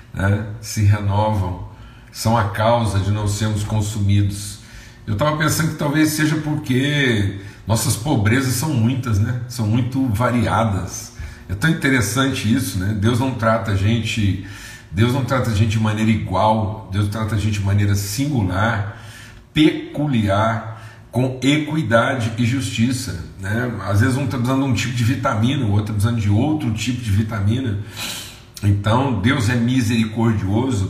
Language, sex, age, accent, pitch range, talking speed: Portuguese, male, 50-69, Brazilian, 105-125 Hz, 150 wpm